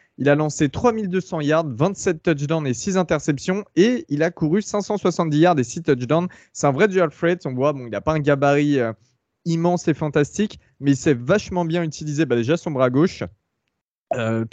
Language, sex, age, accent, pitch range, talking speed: French, male, 20-39, French, 130-165 Hz, 195 wpm